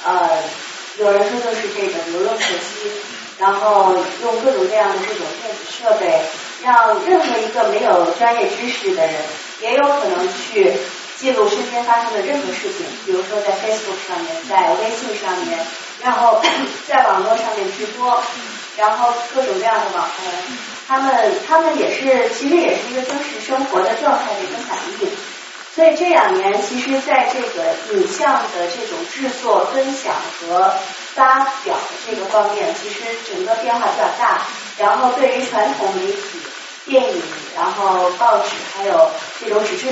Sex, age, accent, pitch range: female, 30-49, native, 210-290 Hz